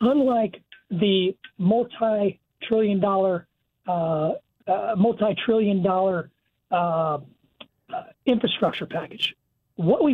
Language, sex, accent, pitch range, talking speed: English, male, American, 195-240 Hz, 70 wpm